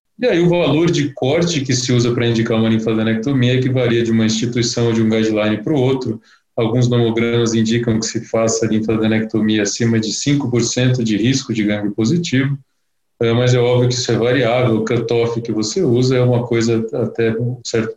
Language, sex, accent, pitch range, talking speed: Portuguese, male, Brazilian, 115-135 Hz, 200 wpm